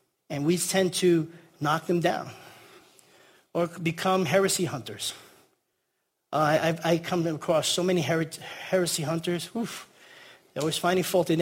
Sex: male